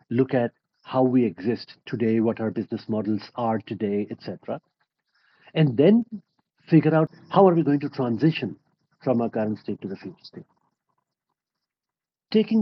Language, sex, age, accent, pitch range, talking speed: English, male, 50-69, Indian, 115-155 Hz, 155 wpm